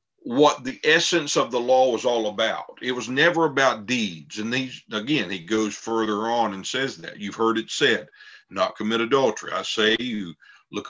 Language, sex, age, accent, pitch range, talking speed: English, male, 50-69, American, 110-145 Hz, 195 wpm